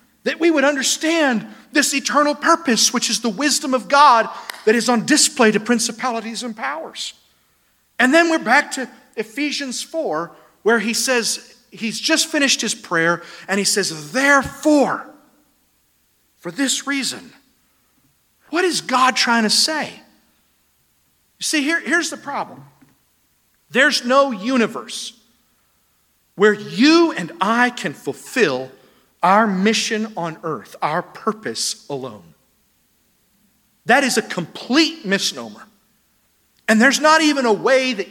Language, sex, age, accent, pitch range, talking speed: English, male, 50-69, American, 220-290 Hz, 130 wpm